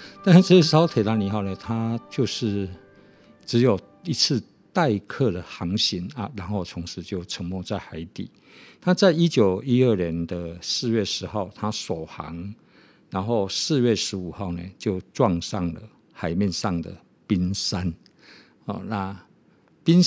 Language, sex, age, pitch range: Chinese, male, 50-69, 95-120 Hz